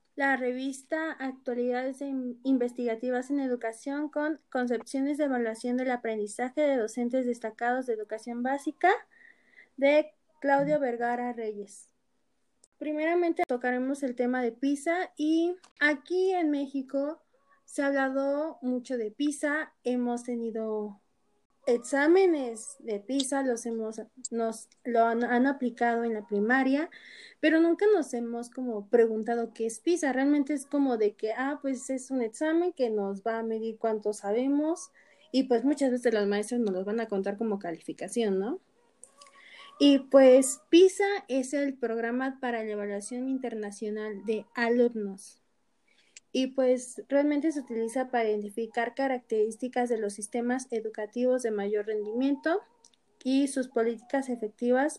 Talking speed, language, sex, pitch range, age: 135 wpm, Spanish, female, 230-280 Hz, 20-39